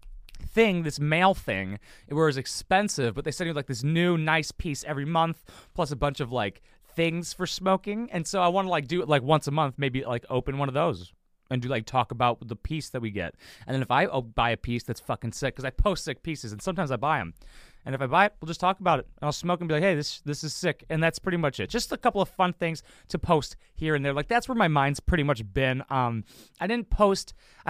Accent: American